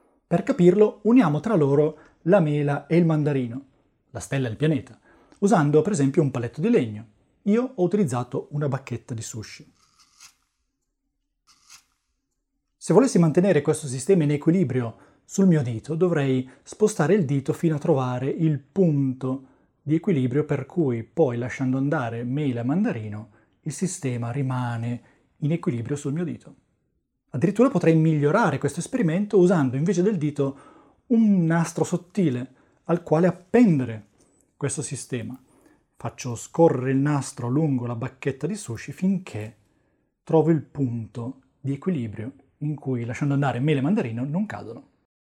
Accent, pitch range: native, 130-175 Hz